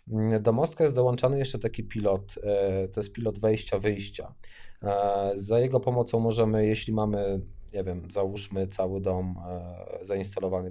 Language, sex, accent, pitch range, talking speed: Polish, male, native, 100-120 Hz, 135 wpm